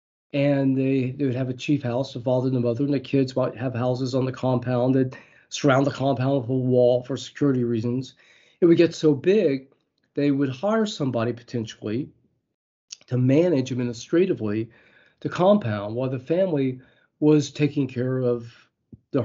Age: 40-59